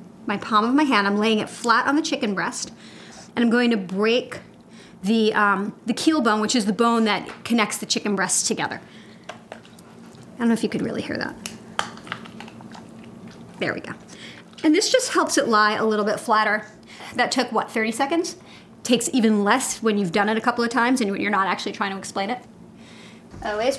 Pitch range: 210-255 Hz